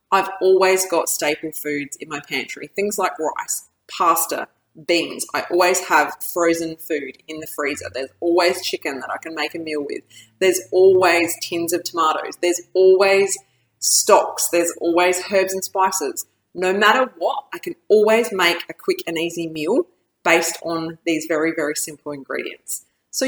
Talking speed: 165 wpm